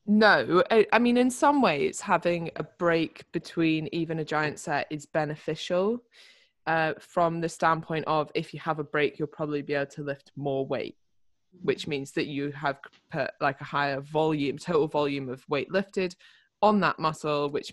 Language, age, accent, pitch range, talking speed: English, 20-39, British, 145-175 Hz, 185 wpm